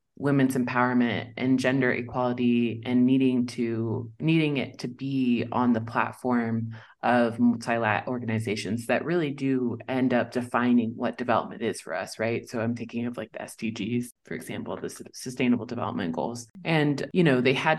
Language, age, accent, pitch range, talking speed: English, 20-39, American, 120-130 Hz, 160 wpm